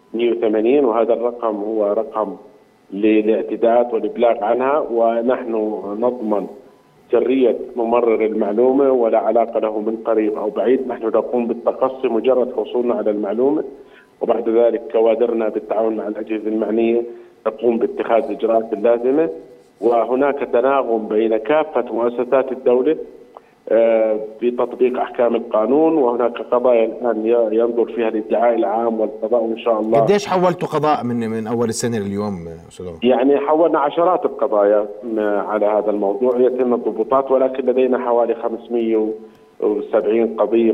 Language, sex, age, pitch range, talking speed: Arabic, male, 40-59, 110-125 Hz, 120 wpm